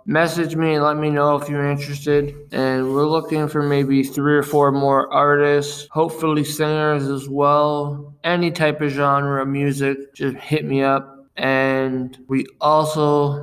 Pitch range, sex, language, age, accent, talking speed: 135-145 Hz, male, English, 20-39, American, 160 wpm